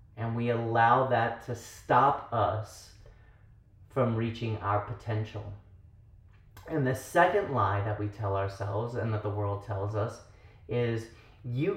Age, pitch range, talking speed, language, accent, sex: 30-49, 100-135 Hz, 140 wpm, English, American, male